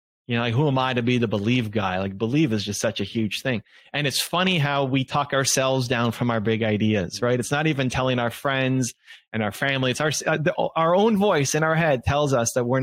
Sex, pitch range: male, 110-140 Hz